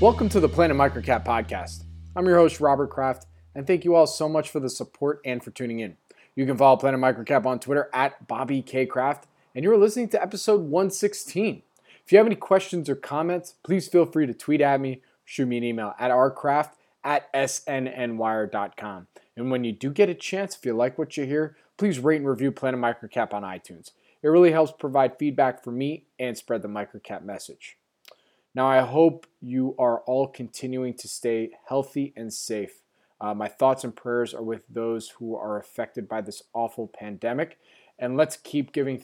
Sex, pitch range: male, 120-155 Hz